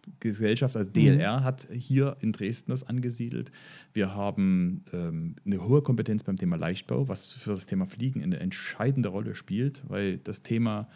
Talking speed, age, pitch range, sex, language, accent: 170 wpm, 40-59, 105-140 Hz, male, German, German